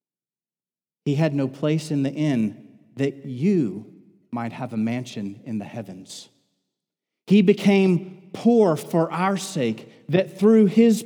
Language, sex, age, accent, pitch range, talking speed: English, male, 40-59, American, 115-165 Hz, 135 wpm